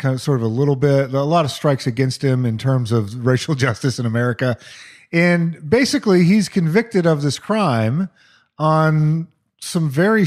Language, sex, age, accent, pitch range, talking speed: English, male, 40-59, American, 125-180 Hz, 175 wpm